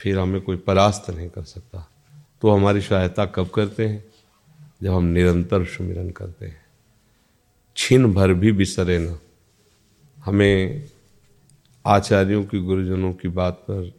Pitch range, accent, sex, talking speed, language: 90-110 Hz, native, male, 135 wpm, Hindi